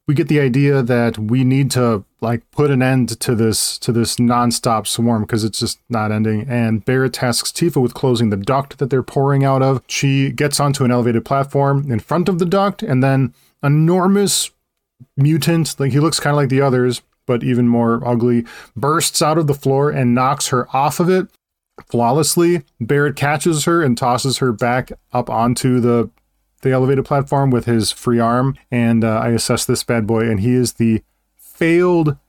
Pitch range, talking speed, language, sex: 120-145 Hz, 195 wpm, English, male